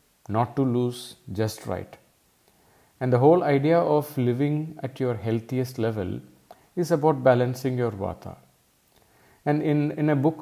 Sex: male